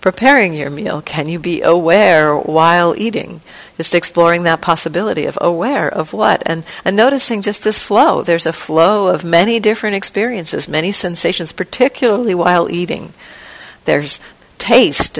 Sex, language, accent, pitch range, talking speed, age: female, English, American, 155-185 Hz, 145 wpm, 50-69